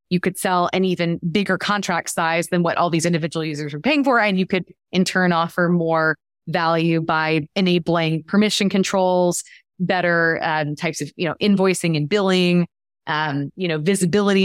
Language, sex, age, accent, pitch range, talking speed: English, female, 20-39, American, 165-195 Hz, 175 wpm